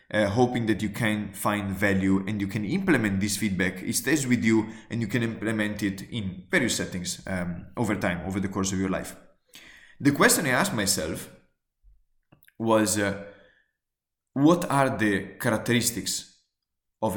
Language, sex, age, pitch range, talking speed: English, male, 20-39, 95-120 Hz, 160 wpm